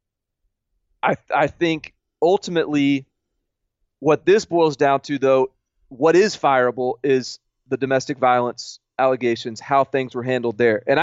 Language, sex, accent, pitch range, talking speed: English, male, American, 125-170 Hz, 135 wpm